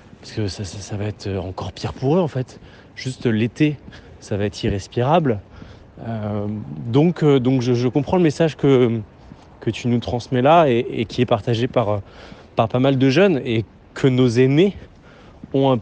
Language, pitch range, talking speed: French, 110-140 Hz, 190 wpm